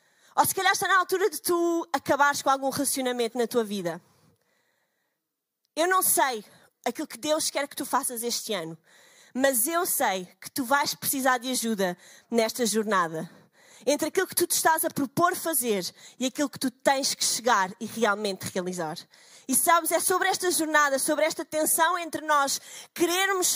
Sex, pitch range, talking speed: female, 240-330 Hz, 175 wpm